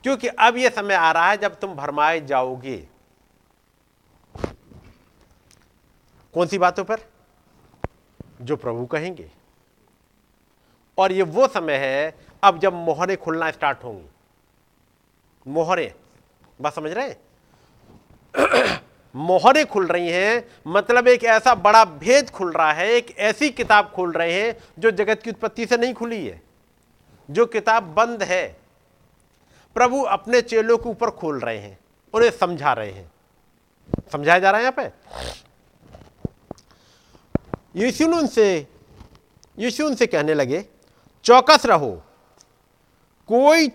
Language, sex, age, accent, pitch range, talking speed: Hindi, male, 50-69, native, 165-235 Hz, 125 wpm